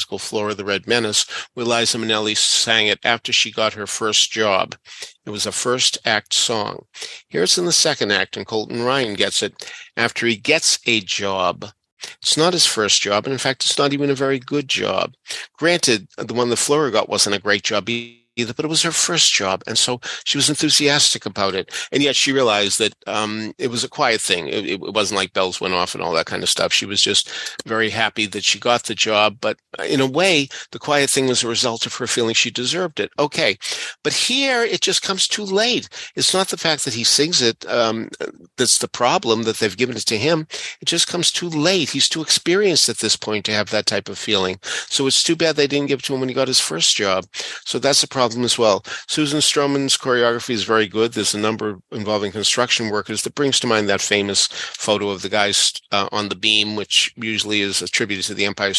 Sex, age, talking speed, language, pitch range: male, 50-69, 230 wpm, English, 105-140 Hz